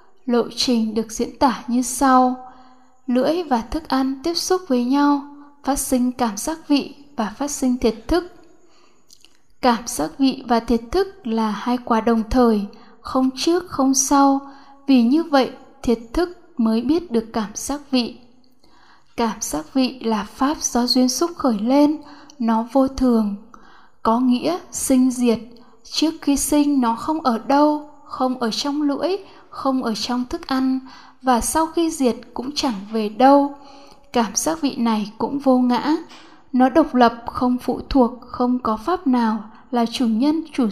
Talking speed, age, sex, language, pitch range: 165 wpm, 10-29, female, Vietnamese, 235-290 Hz